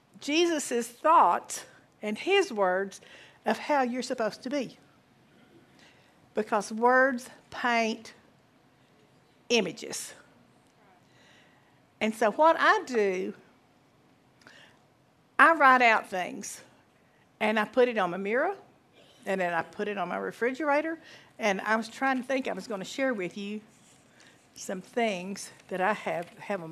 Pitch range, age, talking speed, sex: 205-270 Hz, 60-79, 135 wpm, female